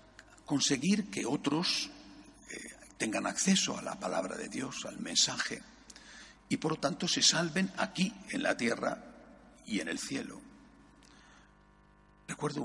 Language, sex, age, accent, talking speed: Spanish, male, 60-79, Spanish, 135 wpm